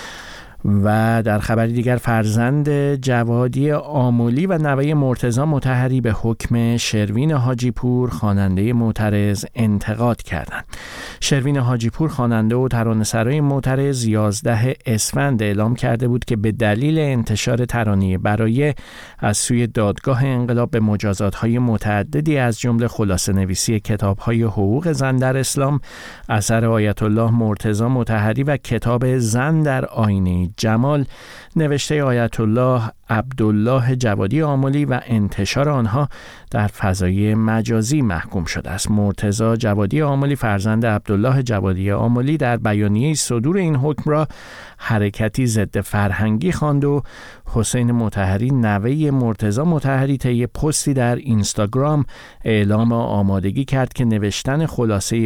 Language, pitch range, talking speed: Persian, 105-130 Hz, 120 wpm